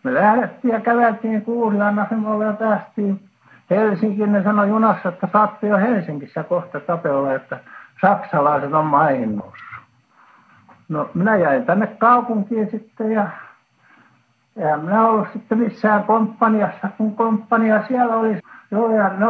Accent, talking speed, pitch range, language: native, 125 wpm, 175-225 Hz, Finnish